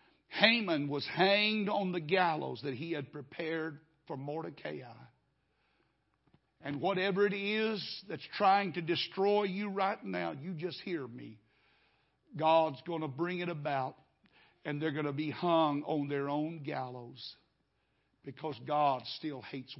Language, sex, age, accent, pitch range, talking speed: English, male, 60-79, American, 140-190 Hz, 140 wpm